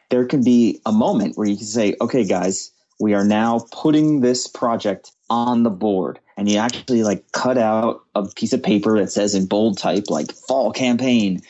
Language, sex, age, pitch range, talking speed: English, male, 30-49, 100-120 Hz, 200 wpm